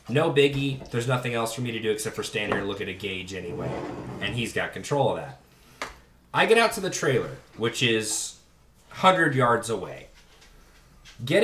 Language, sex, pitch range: English, male, 110-145 Hz